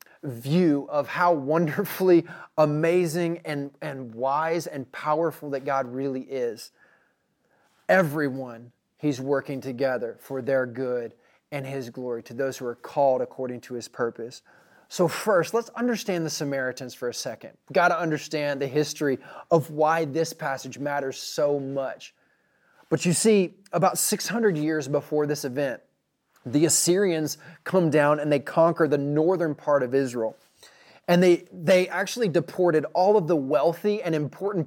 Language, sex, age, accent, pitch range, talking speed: English, male, 30-49, American, 140-175 Hz, 150 wpm